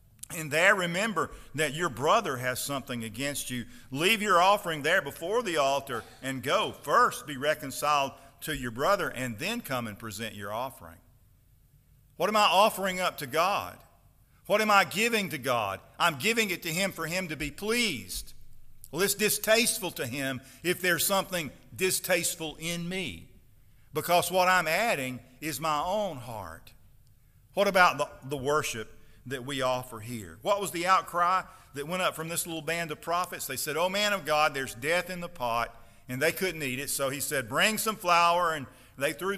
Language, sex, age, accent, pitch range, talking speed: English, male, 50-69, American, 125-180 Hz, 185 wpm